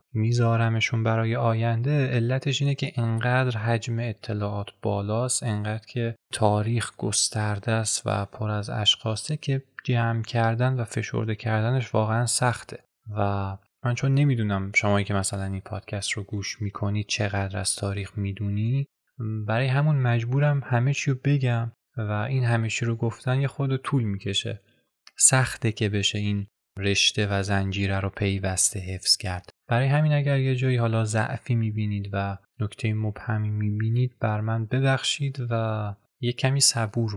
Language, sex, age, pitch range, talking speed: Persian, male, 20-39, 100-120 Hz, 145 wpm